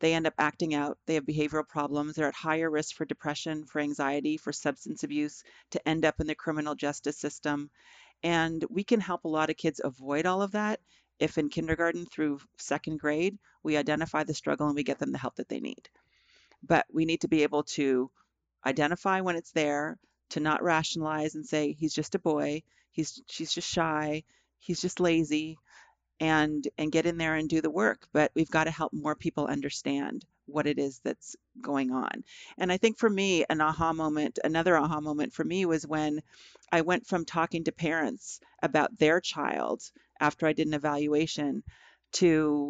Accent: American